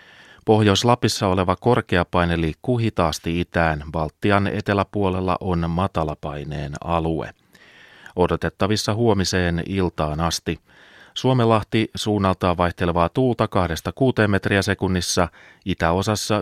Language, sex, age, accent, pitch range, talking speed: Finnish, male, 30-49, native, 85-100 Hz, 85 wpm